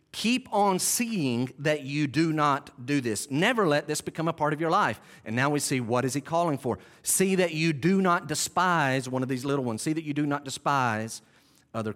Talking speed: 225 wpm